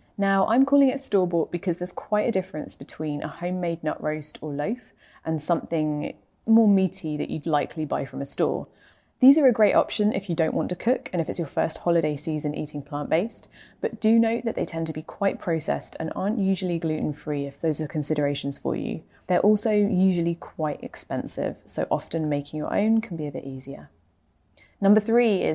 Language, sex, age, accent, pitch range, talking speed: English, female, 20-39, British, 150-200 Hz, 200 wpm